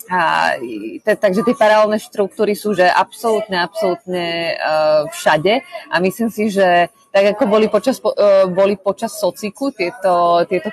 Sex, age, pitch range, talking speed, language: female, 20-39, 175-215 Hz, 145 wpm, Slovak